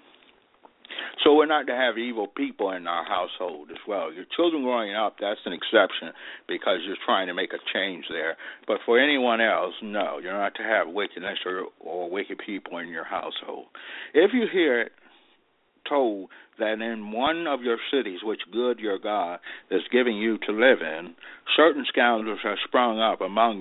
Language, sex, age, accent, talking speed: English, male, 60-79, American, 180 wpm